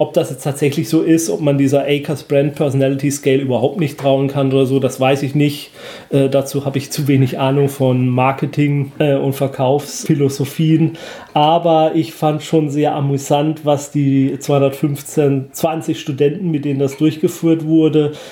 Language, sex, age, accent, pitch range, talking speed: German, male, 30-49, German, 140-175 Hz, 165 wpm